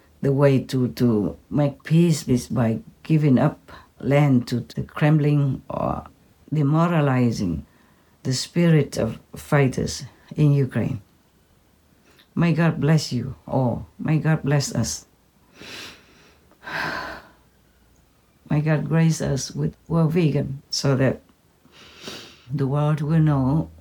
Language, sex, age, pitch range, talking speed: English, female, 60-79, 110-165 Hz, 110 wpm